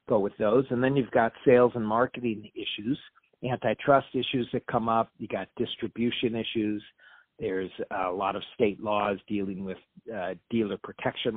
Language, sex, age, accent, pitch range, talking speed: English, male, 50-69, American, 100-120 Hz, 160 wpm